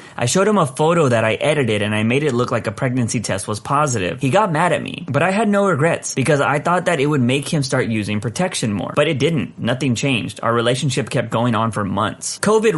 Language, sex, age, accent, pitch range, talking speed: English, male, 30-49, American, 115-155 Hz, 255 wpm